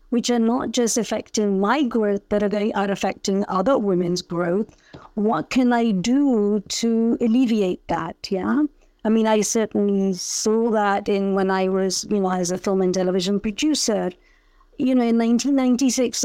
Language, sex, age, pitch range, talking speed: English, female, 50-69, 195-235 Hz, 175 wpm